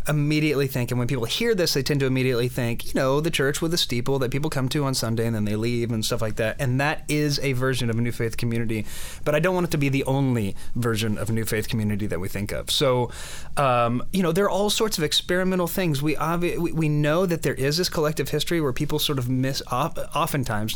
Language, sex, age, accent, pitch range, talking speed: English, male, 30-49, American, 120-155 Hz, 260 wpm